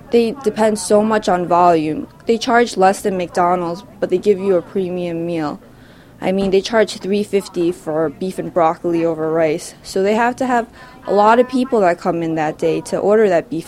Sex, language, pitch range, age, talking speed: female, English, 170-200 Hz, 20-39, 225 wpm